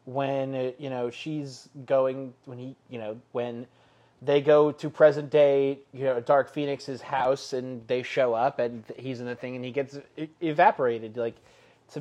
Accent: American